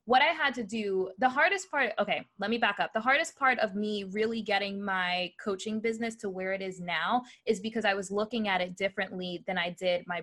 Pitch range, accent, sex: 190-235 Hz, American, female